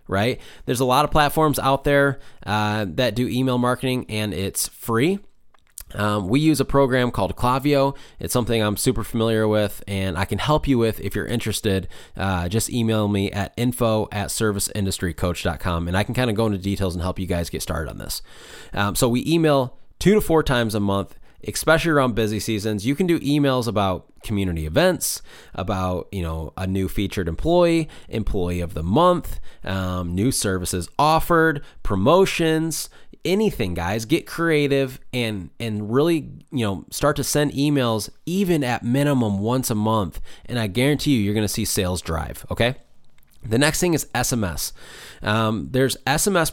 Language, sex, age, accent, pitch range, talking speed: English, male, 20-39, American, 100-140 Hz, 175 wpm